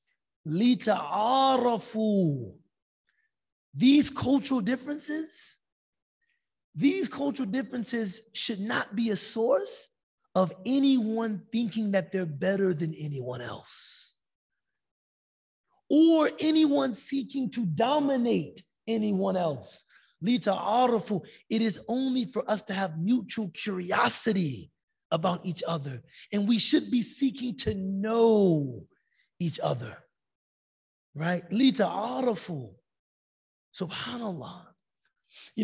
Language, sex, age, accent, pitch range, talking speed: English, male, 30-49, American, 175-250 Hz, 95 wpm